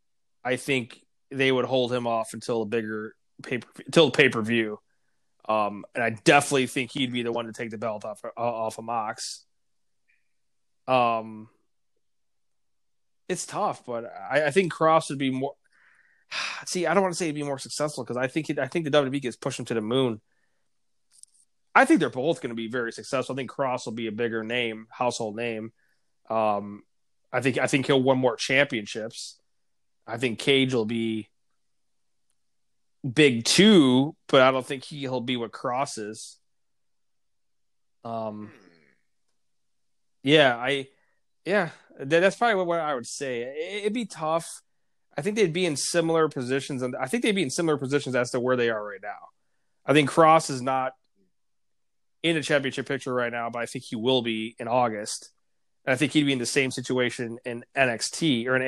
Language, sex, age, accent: English, male, 20-39, American